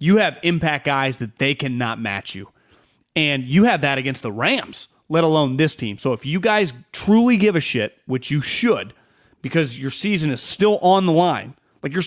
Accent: American